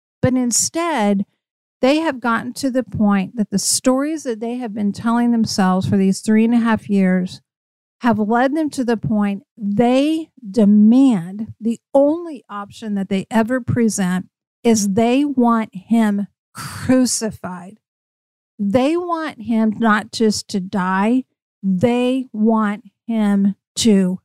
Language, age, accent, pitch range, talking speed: English, 50-69, American, 200-245 Hz, 135 wpm